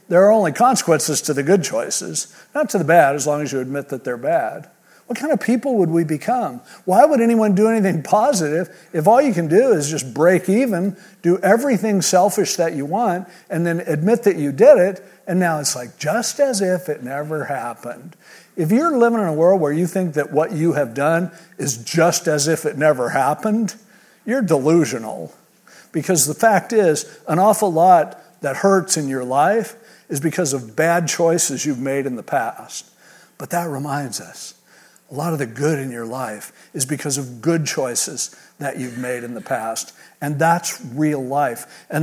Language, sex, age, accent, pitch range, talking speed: English, male, 50-69, American, 150-205 Hz, 195 wpm